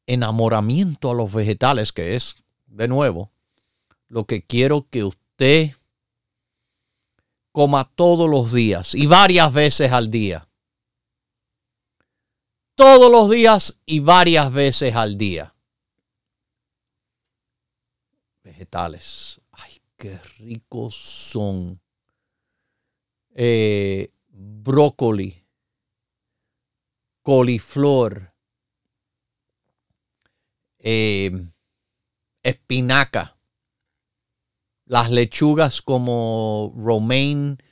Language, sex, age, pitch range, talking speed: Spanish, male, 50-69, 105-135 Hz, 70 wpm